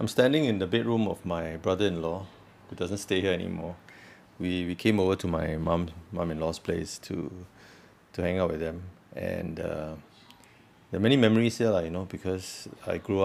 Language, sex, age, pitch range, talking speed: English, male, 30-49, 85-100 Hz, 185 wpm